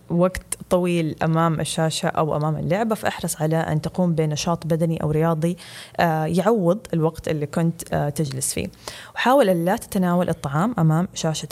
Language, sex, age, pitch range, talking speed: Arabic, female, 20-39, 160-195 Hz, 145 wpm